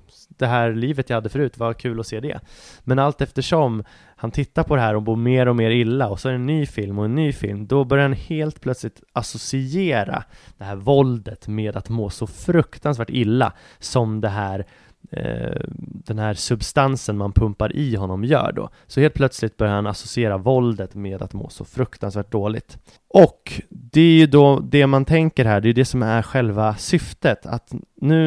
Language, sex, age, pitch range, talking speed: English, male, 20-39, 105-130 Hz, 200 wpm